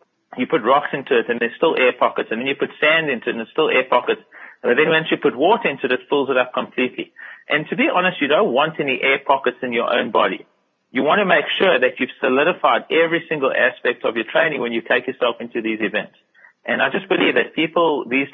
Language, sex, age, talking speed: English, male, 30-49, 250 wpm